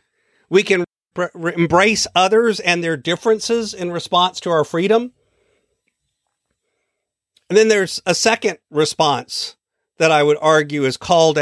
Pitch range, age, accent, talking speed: 155-200 Hz, 50-69, American, 125 wpm